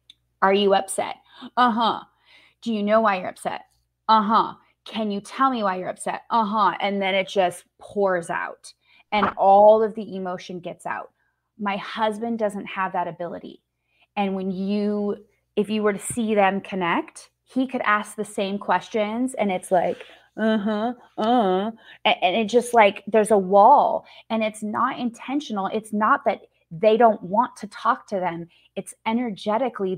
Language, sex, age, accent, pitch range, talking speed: English, female, 20-39, American, 190-225 Hz, 165 wpm